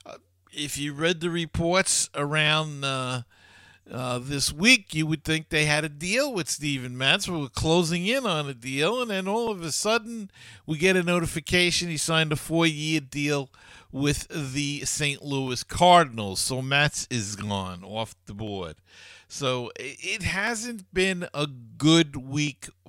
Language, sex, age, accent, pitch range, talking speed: English, male, 50-69, American, 105-155 Hz, 160 wpm